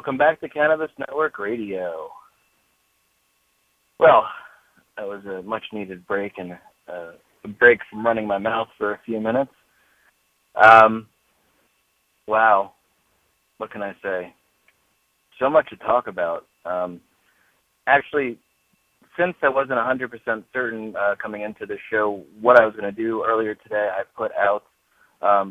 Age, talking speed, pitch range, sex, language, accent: 30-49, 140 wpm, 100-120 Hz, male, English, American